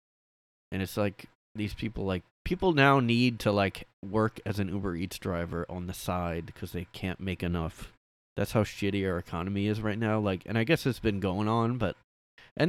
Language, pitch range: English, 90-115 Hz